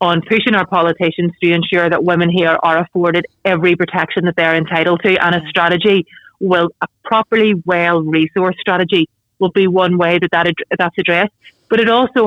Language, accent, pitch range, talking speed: English, Irish, 170-195 Hz, 190 wpm